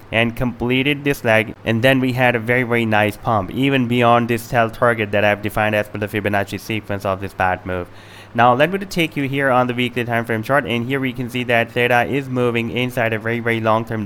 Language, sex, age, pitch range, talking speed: English, male, 20-39, 105-125 Hz, 245 wpm